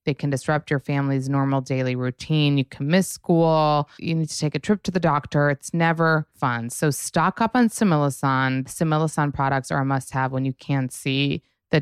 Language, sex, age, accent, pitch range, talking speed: English, female, 20-39, American, 140-180 Hz, 200 wpm